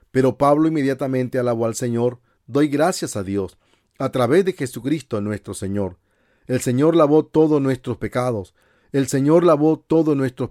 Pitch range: 105-150 Hz